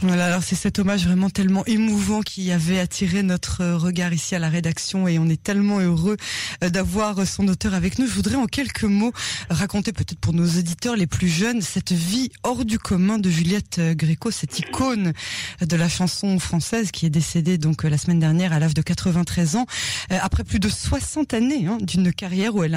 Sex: female